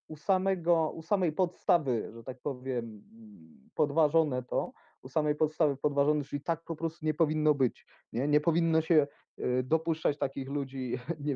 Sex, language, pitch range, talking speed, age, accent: male, Polish, 130-165 Hz, 155 wpm, 30-49, native